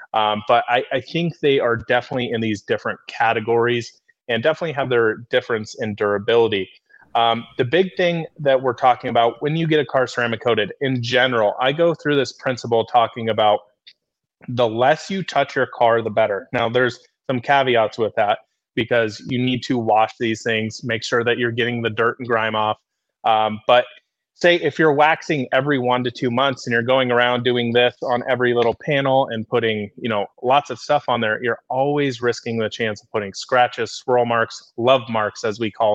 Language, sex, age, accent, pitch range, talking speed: English, male, 30-49, American, 115-130 Hz, 200 wpm